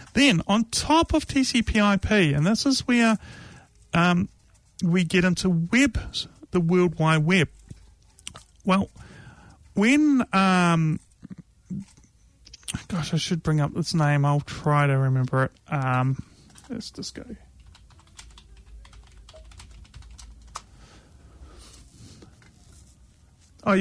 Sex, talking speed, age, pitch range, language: male, 100 wpm, 30-49, 140-195 Hz, English